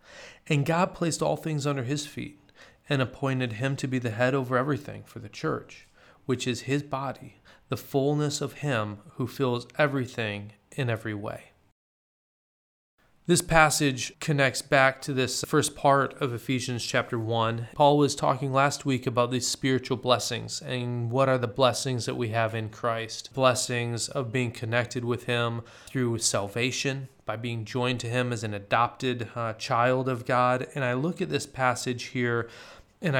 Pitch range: 120-140 Hz